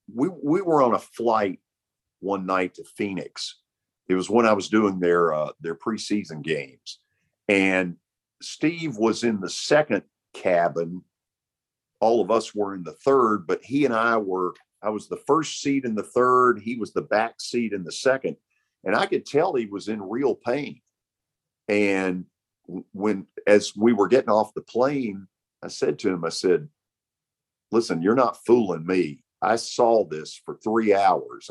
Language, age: English, 50-69